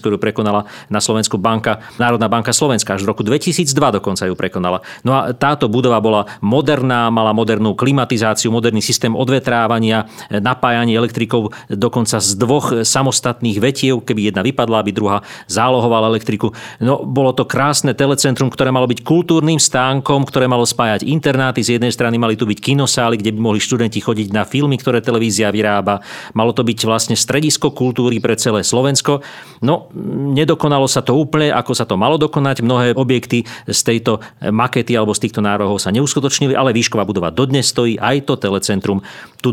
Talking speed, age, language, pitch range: 170 wpm, 40-59, Slovak, 110-135 Hz